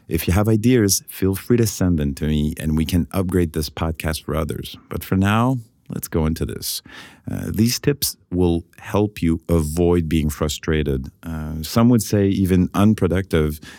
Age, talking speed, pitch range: 40-59, 180 wpm, 80-100 Hz